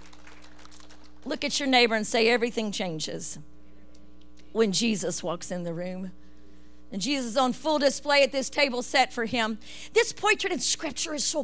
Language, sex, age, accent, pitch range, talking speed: English, female, 50-69, American, 200-300 Hz, 170 wpm